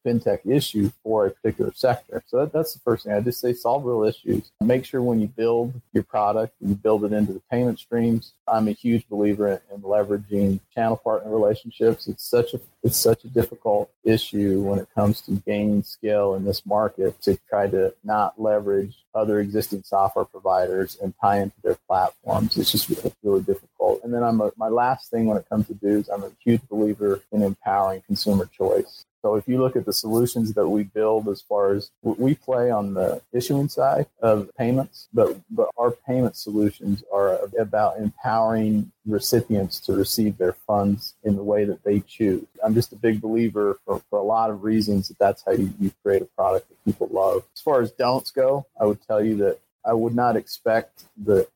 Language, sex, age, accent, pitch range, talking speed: English, male, 40-59, American, 100-120 Hz, 205 wpm